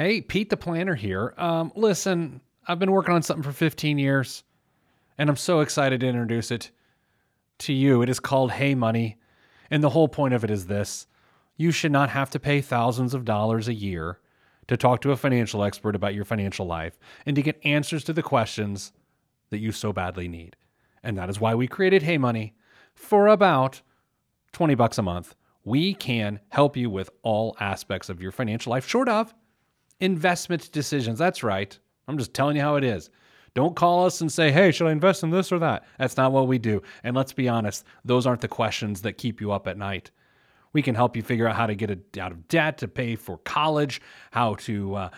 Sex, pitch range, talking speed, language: male, 105-150 Hz, 210 wpm, English